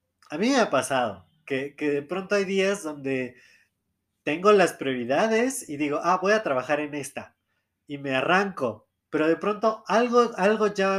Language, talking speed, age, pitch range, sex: Spanish, 175 wpm, 20-39, 145-200 Hz, male